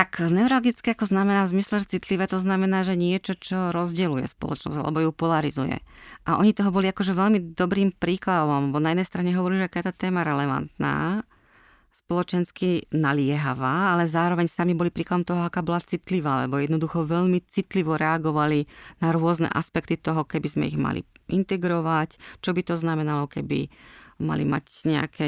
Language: Slovak